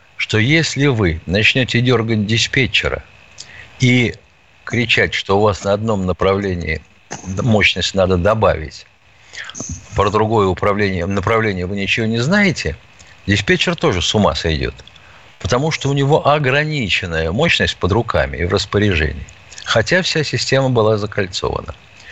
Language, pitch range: Russian, 90-135 Hz